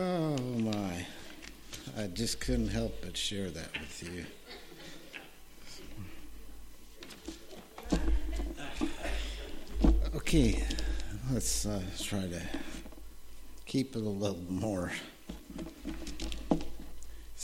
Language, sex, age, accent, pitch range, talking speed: English, male, 60-79, American, 105-165 Hz, 75 wpm